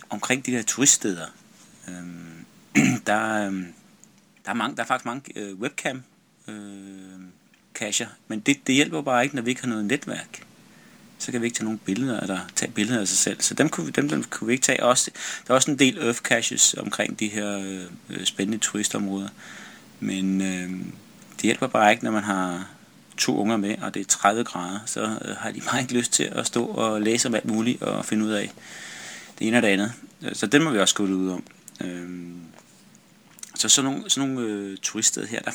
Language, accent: Danish, native